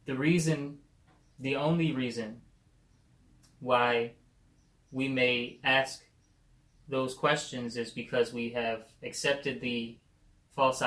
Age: 20-39